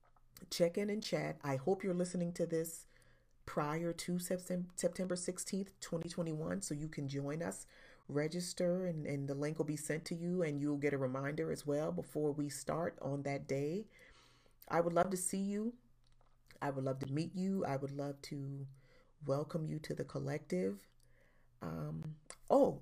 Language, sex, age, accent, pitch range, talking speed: English, female, 40-59, American, 135-170 Hz, 175 wpm